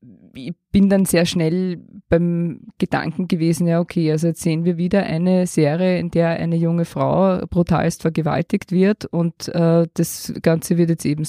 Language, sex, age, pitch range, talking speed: German, female, 20-39, 165-195 Hz, 165 wpm